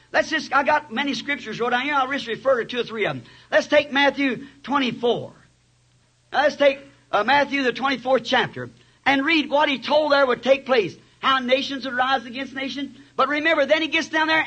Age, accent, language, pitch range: 60-79, American, English, 235-305 Hz